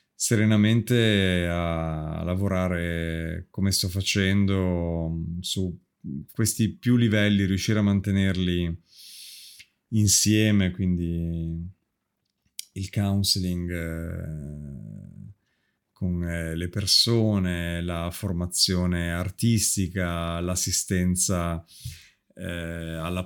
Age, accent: 30-49, native